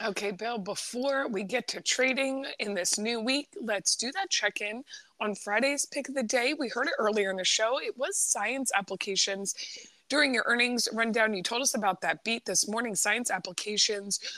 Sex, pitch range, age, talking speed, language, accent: female, 200-265 Hz, 20-39, 190 wpm, English, American